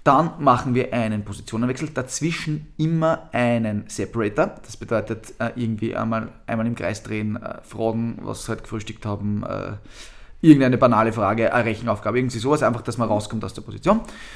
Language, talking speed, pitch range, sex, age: German, 175 wpm, 110-135 Hz, male, 20-39